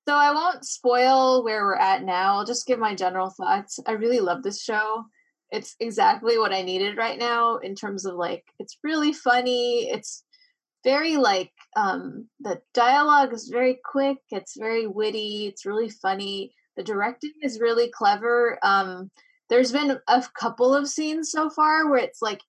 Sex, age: female, 10-29